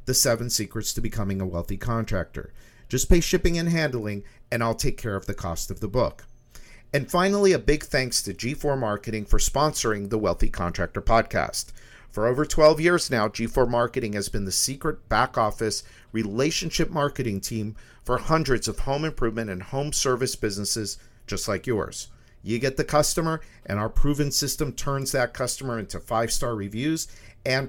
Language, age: English, 50-69